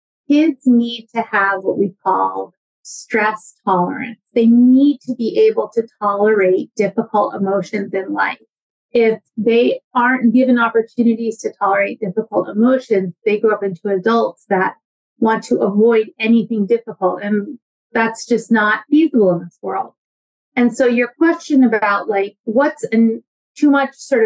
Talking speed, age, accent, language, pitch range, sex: 145 wpm, 30-49, American, English, 205-245 Hz, female